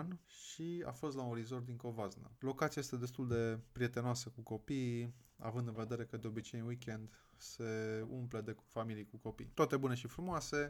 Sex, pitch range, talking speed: male, 115-135 Hz, 185 wpm